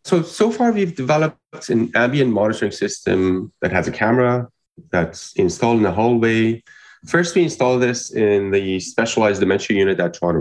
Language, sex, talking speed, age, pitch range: English, male, 165 wpm, 30-49, 105-125 Hz